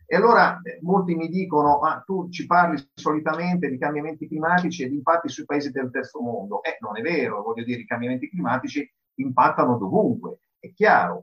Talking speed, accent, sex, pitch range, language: 190 wpm, native, male, 120-180 Hz, Italian